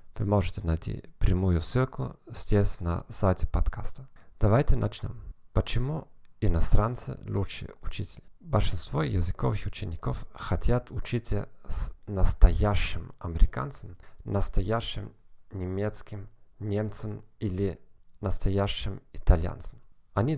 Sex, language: male, Russian